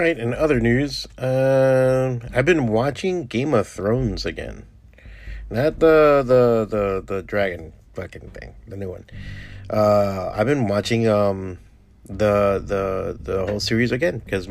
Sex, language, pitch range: male, English, 100-120 Hz